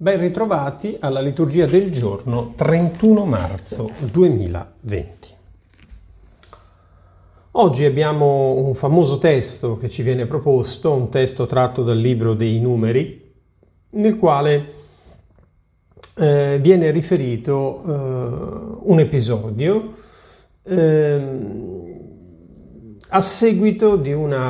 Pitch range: 110-155 Hz